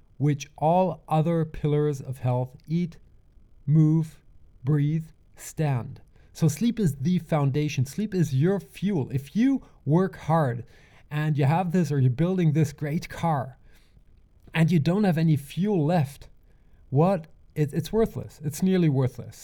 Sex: male